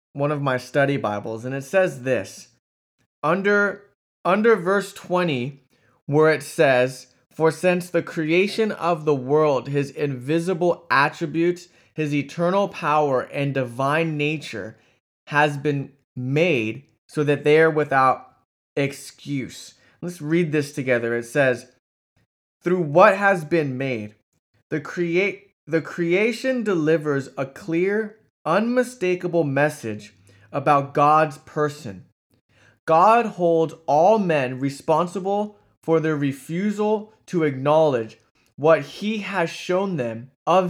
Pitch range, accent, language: 135-180 Hz, American, English